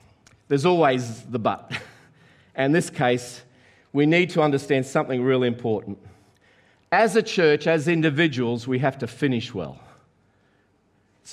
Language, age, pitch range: English, 50-69, 130-180 Hz